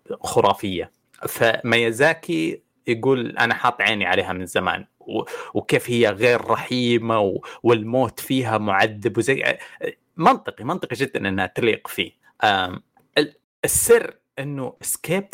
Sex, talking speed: male, 115 wpm